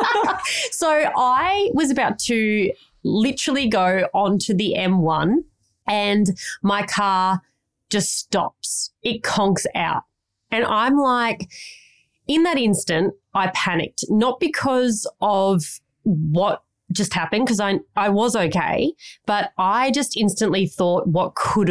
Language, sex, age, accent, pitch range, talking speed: English, female, 30-49, Australian, 170-220 Hz, 120 wpm